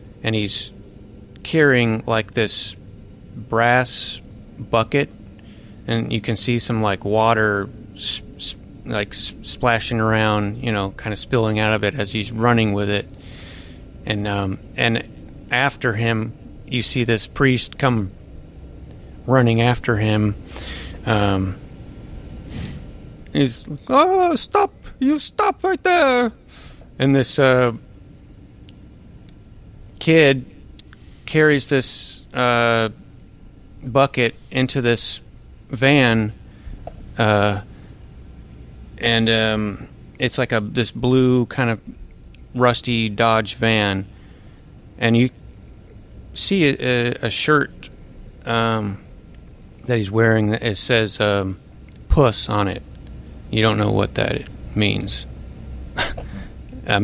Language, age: English, 30-49